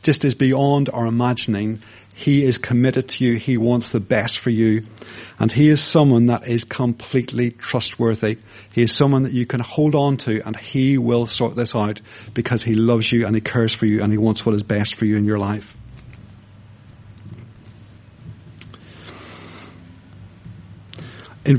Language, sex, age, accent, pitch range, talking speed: English, male, 40-59, British, 110-130 Hz, 165 wpm